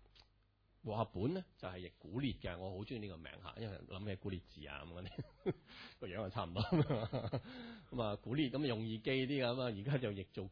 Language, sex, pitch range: Chinese, male, 100-130 Hz